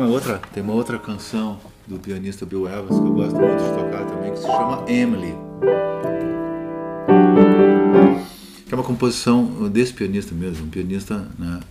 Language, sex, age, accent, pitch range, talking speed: Portuguese, male, 50-69, Brazilian, 85-105 Hz, 155 wpm